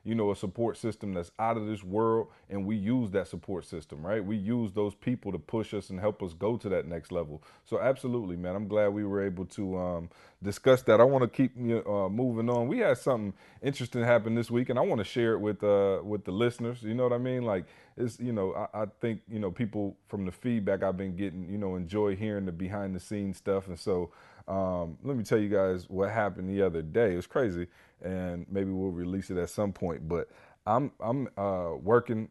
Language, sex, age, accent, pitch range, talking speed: English, male, 30-49, American, 95-115 Hz, 235 wpm